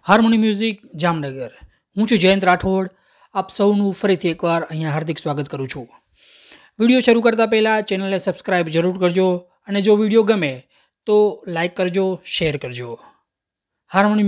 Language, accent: Gujarati, native